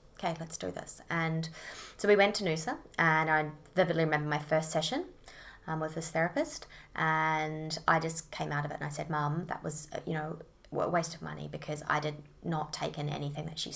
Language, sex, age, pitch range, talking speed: English, female, 20-39, 145-165 Hz, 215 wpm